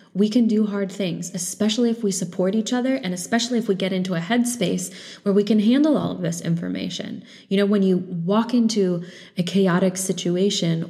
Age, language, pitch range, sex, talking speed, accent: 20-39, English, 170-205 Hz, female, 200 wpm, American